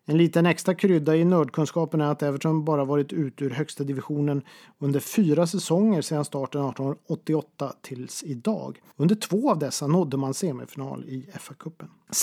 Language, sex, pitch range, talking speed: Swedish, male, 140-175 Hz, 155 wpm